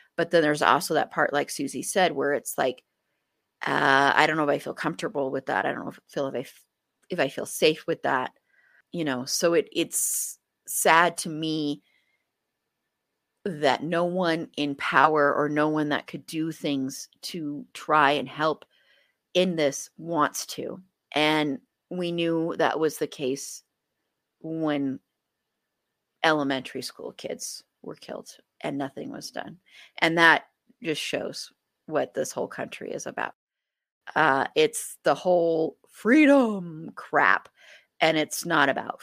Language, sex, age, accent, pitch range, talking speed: English, female, 30-49, American, 145-165 Hz, 155 wpm